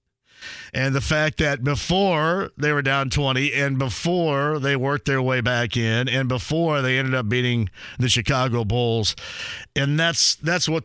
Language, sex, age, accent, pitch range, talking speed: English, male, 50-69, American, 130-180 Hz, 165 wpm